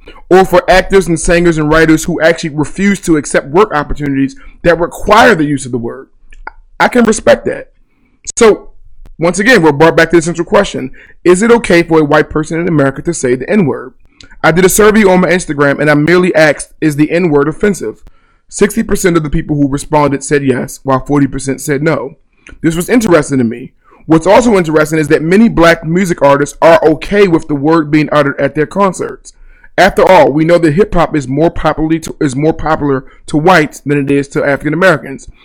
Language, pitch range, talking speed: English, 145-175 Hz, 200 wpm